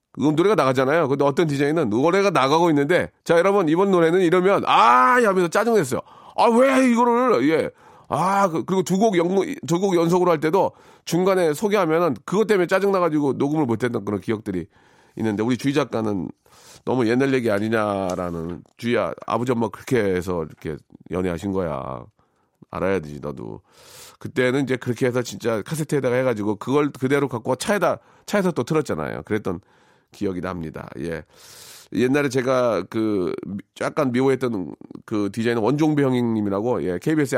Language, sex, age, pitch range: Korean, male, 40-59, 110-170 Hz